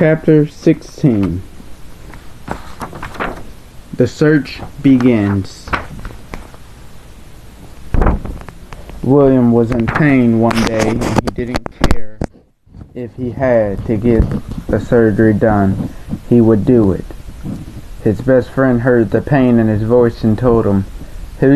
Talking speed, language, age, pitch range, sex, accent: 110 wpm, English, 20-39, 100-130 Hz, male, American